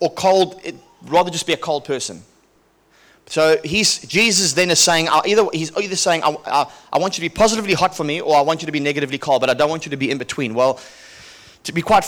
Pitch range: 150-185 Hz